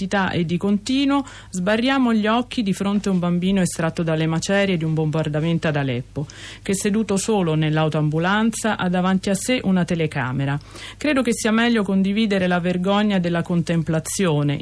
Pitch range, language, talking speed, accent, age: 155-205 Hz, Italian, 155 wpm, native, 40-59